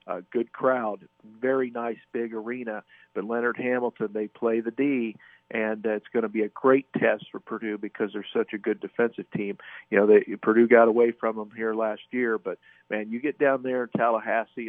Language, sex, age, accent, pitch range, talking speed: English, male, 50-69, American, 105-115 Hz, 205 wpm